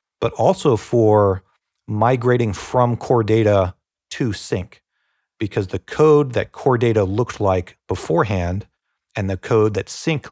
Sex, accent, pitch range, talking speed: male, American, 95-115 Hz, 135 wpm